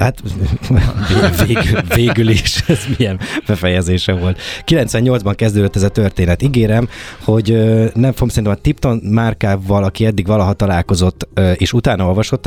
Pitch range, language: 90-110 Hz, Hungarian